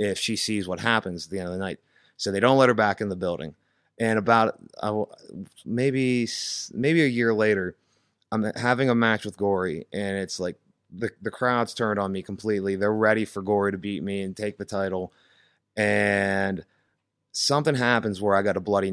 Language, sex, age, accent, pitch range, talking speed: English, male, 30-49, American, 100-120 Hz, 200 wpm